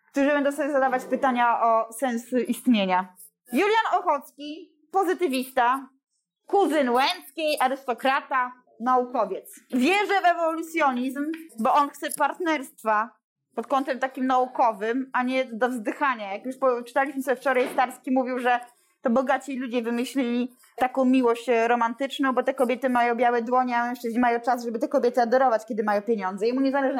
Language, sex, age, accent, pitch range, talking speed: Polish, female, 20-39, native, 240-290 Hz, 145 wpm